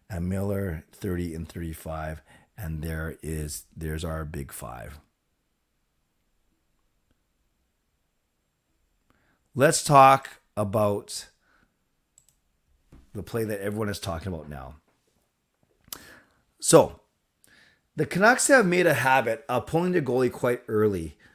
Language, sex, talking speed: English, male, 100 wpm